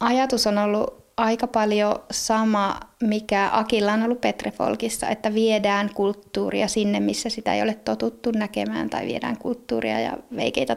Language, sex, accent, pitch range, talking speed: Finnish, female, native, 205-245 Hz, 150 wpm